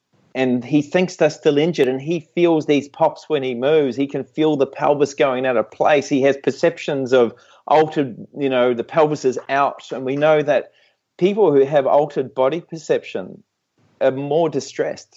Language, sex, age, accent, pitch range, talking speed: English, male, 30-49, Australian, 135-180 Hz, 185 wpm